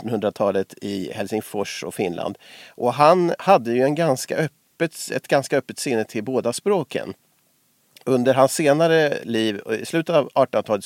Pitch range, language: 110-150 Hz, Swedish